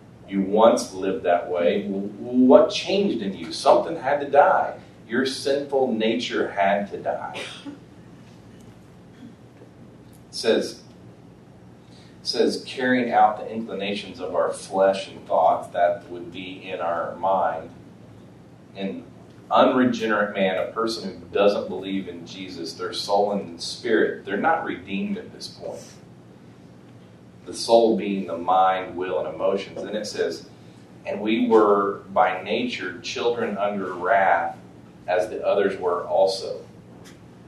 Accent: American